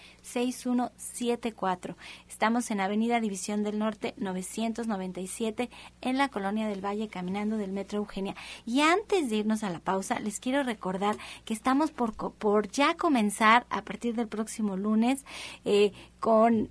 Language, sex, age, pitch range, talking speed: Spanish, female, 30-49, 205-245 Hz, 145 wpm